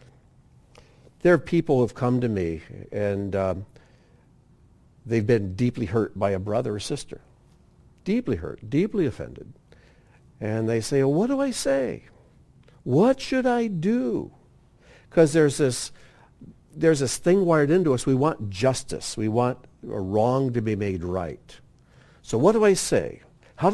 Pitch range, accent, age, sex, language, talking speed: 100-135 Hz, American, 60-79, male, English, 145 wpm